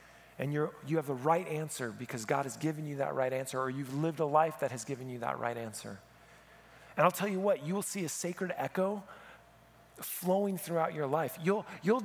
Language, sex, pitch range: English, male, 145-190 Hz